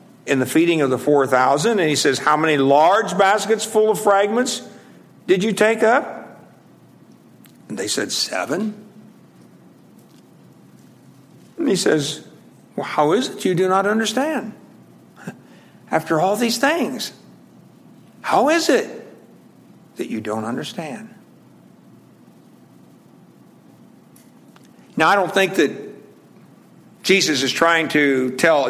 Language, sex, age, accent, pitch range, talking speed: English, male, 60-79, American, 135-205 Hz, 115 wpm